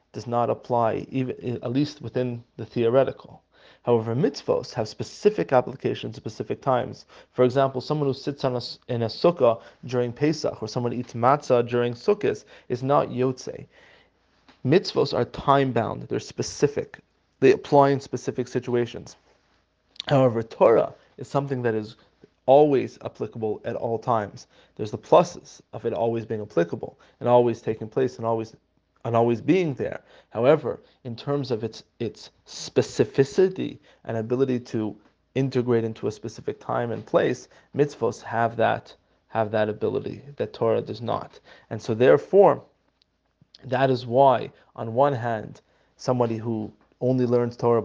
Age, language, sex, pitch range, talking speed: 30-49, English, male, 115-135 Hz, 150 wpm